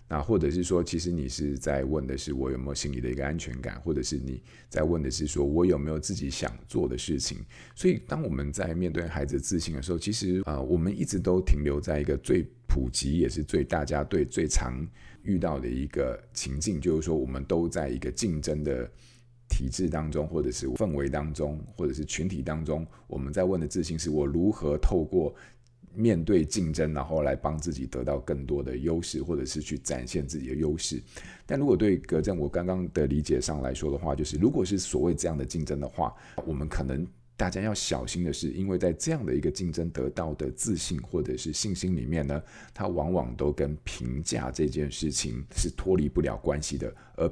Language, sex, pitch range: Chinese, male, 70-85 Hz